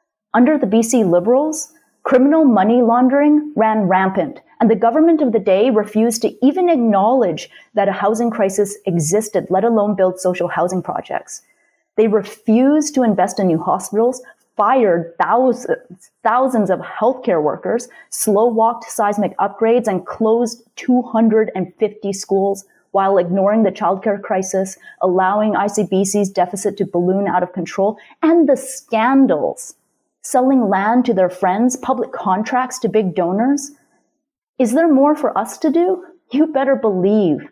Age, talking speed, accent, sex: 30-49, 140 wpm, American, female